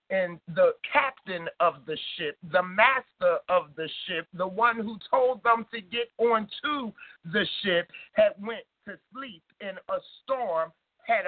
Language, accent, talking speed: English, American, 155 wpm